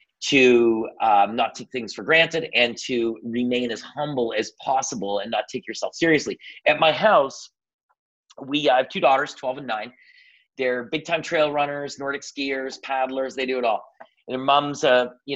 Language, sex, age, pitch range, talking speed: English, male, 30-49, 125-170 Hz, 170 wpm